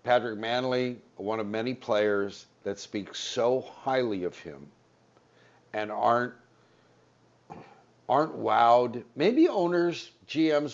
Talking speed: 105 wpm